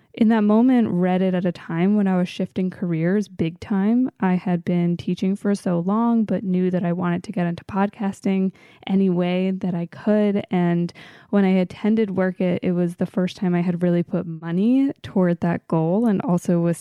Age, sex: 20-39, female